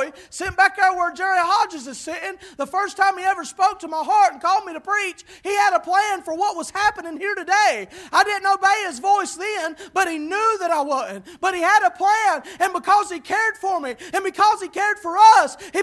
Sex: male